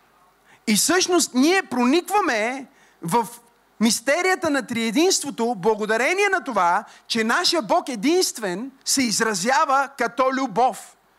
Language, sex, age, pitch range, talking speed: Bulgarian, male, 40-59, 235-315 Hz, 100 wpm